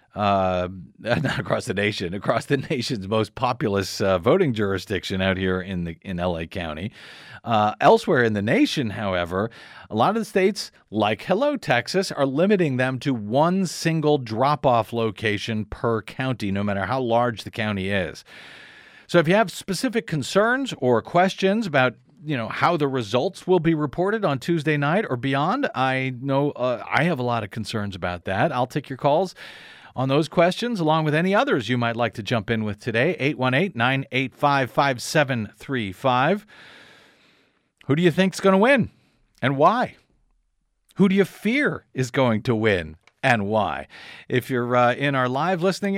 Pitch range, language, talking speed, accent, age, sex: 115-160 Hz, English, 170 wpm, American, 40-59, male